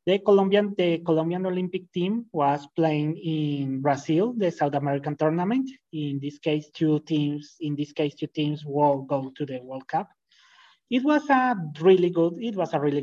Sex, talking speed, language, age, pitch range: male, 180 wpm, English, 30-49, 150-195 Hz